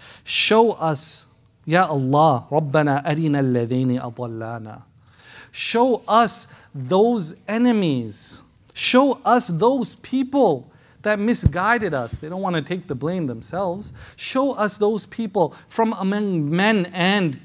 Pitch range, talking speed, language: 125-190 Hz, 120 wpm, English